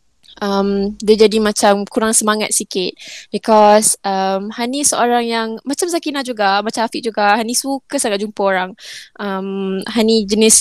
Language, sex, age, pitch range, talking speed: Malay, female, 20-39, 200-240 Hz, 145 wpm